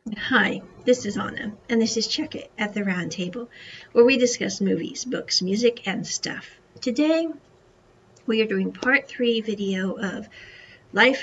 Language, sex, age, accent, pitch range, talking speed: English, female, 40-59, American, 195-240 Hz, 155 wpm